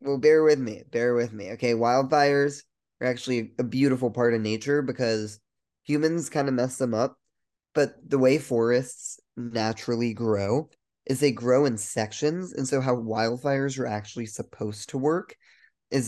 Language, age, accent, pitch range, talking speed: English, 20-39, American, 110-130 Hz, 165 wpm